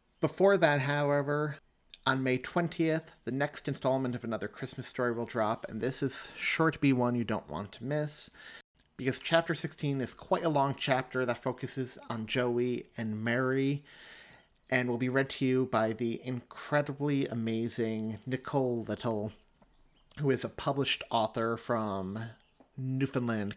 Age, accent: 30-49, American